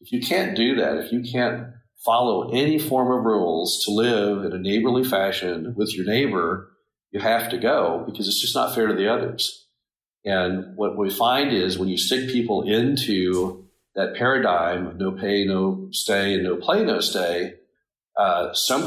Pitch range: 95-115 Hz